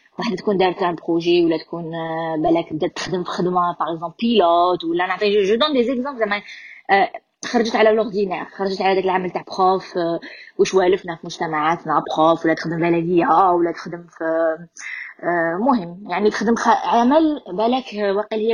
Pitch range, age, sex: 180-255 Hz, 20-39, female